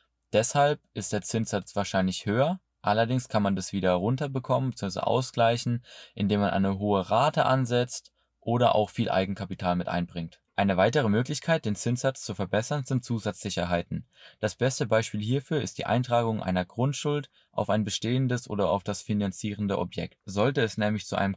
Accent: German